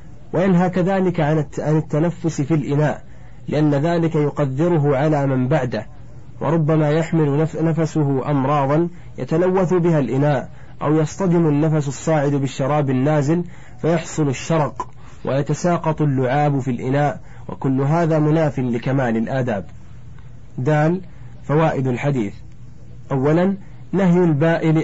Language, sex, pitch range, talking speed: Arabic, male, 125-160 Hz, 100 wpm